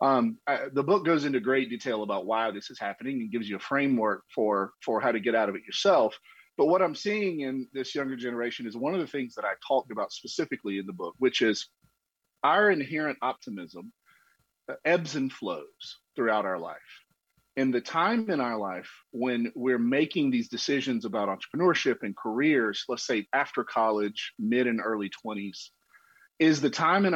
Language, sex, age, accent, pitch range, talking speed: English, male, 40-59, American, 120-170 Hz, 190 wpm